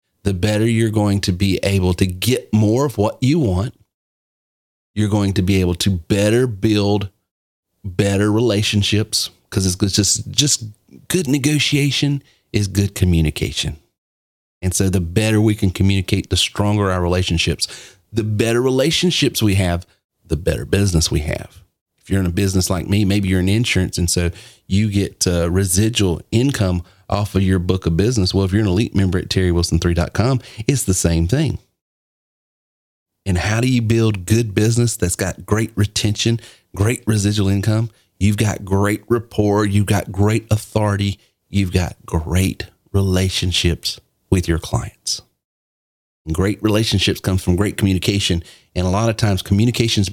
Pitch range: 90-110 Hz